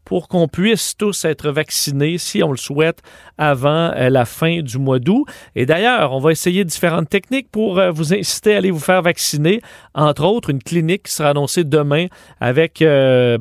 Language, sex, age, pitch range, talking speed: French, male, 40-59, 140-180 Hz, 185 wpm